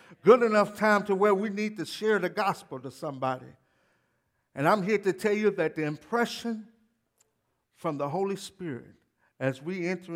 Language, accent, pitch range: English, American, 140-180 Hz